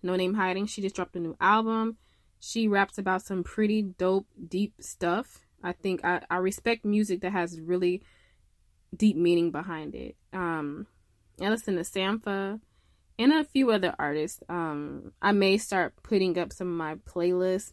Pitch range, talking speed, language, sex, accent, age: 165-210 Hz, 170 wpm, English, female, American, 20-39